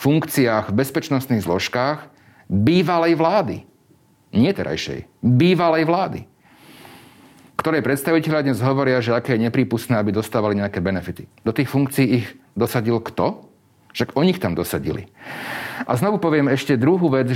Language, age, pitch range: Slovak, 40-59, 110-145 Hz